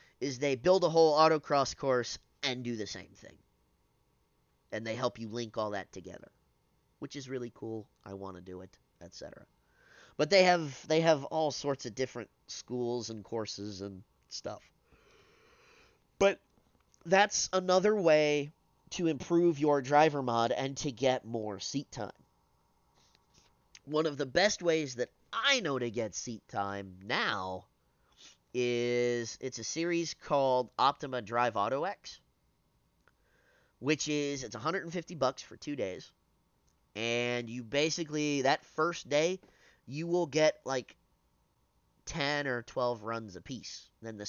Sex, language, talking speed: male, English, 145 wpm